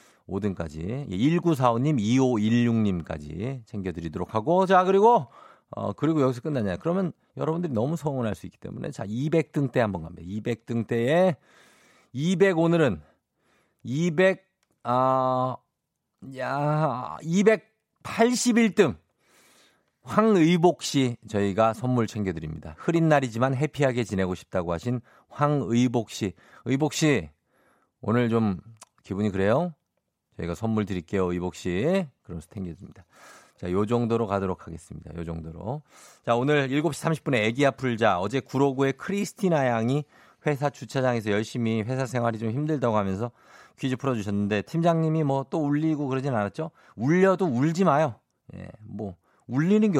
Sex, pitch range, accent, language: male, 105-155 Hz, native, Korean